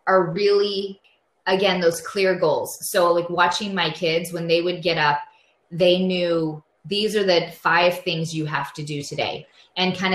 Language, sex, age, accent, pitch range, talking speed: English, female, 20-39, American, 170-205 Hz, 175 wpm